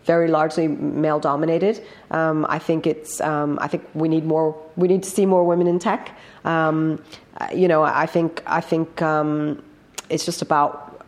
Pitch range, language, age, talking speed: 155-170 Hz, English, 30-49, 180 wpm